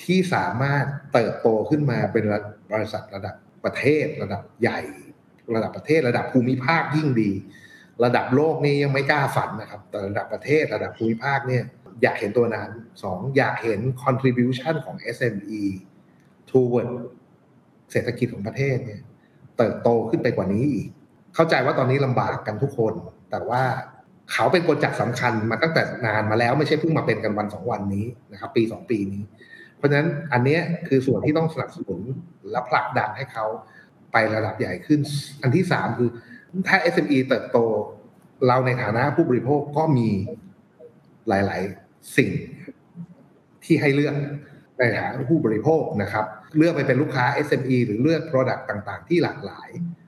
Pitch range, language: 110-150 Hz, Thai